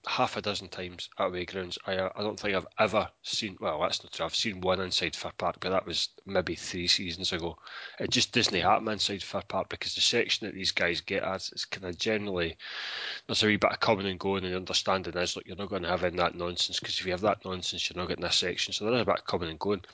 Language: English